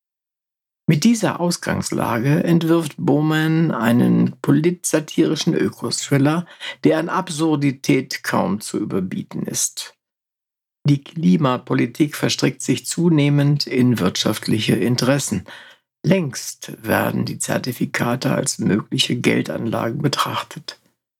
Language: German